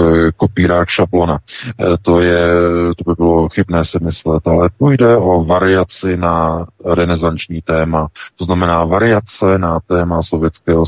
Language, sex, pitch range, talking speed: Czech, male, 80-90 Hz, 120 wpm